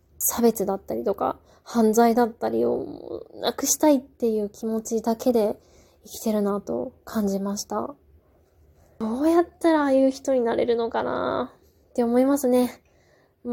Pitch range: 200-245 Hz